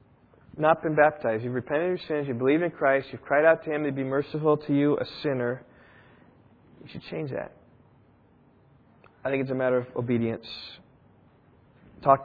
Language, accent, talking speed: English, American, 180 wpm